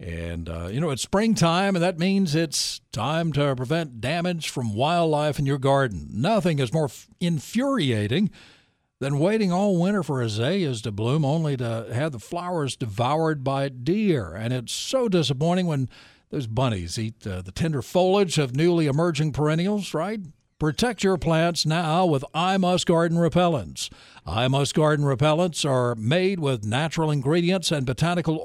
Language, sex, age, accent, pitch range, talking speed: English, male, 60-79, American, 135-180 Hz, 160 wpm